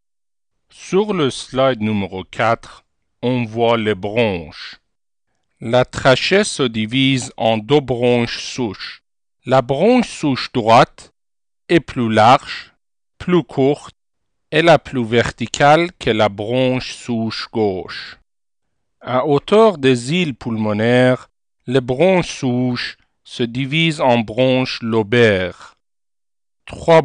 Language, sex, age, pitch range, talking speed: French, male, 50-69, 110-140 Hz, 110 wpm